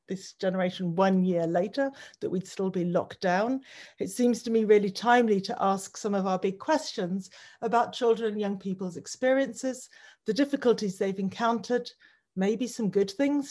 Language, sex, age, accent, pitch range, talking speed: English, female, 40-59, British, 190-245 Hz, 170 wpm